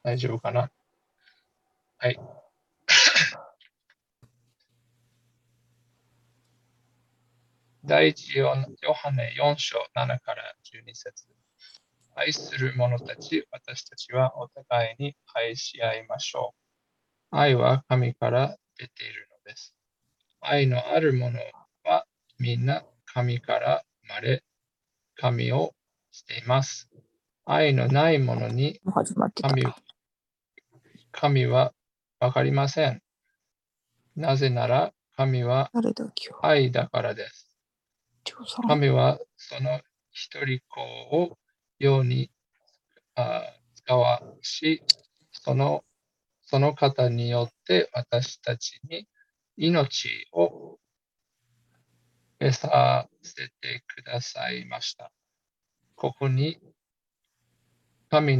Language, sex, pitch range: Japanese, male, 120-140 Hz